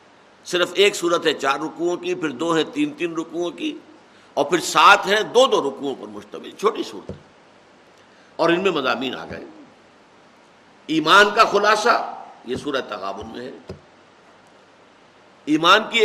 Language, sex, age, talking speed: Urdu, male, 60-79, 155 wpm